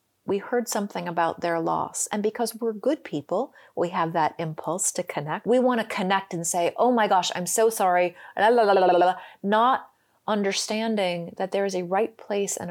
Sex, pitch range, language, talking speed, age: female, 170-235 Hz, English, 180 wpm, 30-49